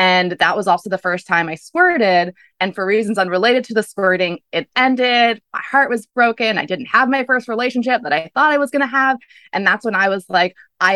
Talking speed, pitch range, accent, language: 235 wpm, 180-245 Hz, American, English